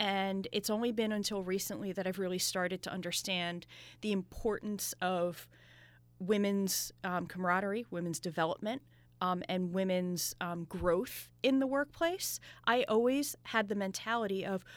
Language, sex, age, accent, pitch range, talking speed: English, female, 30-49, American, 180-230 Hz, 140 wpm